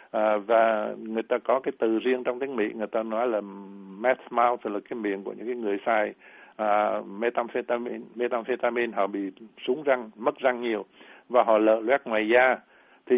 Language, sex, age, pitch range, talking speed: Vietnamese, male, 60-79, 110-130 Hz, 185 wpm